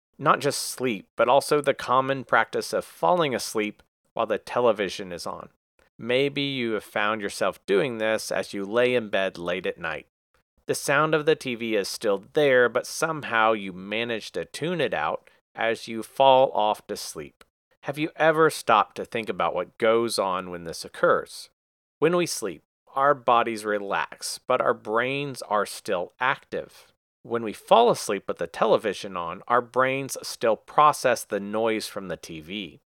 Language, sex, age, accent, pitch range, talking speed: English, male, 40-59, American, 100-130 Hz, 175 wpm